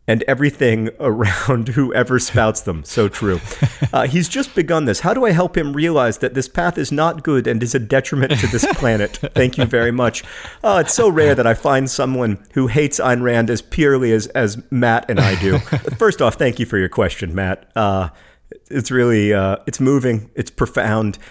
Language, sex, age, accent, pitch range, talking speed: English, male, 40-59, American, 105-140 Hz, 205 wpm